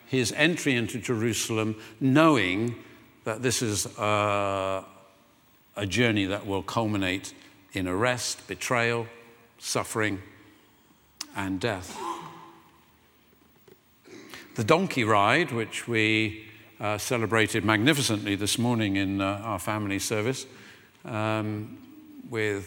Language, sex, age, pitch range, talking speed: English, male, 50-69, 105-130 Hz, 100 wpm